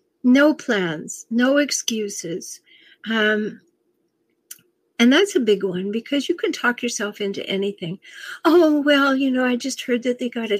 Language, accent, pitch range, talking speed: English, American, 215-290 Hz, 160 wpm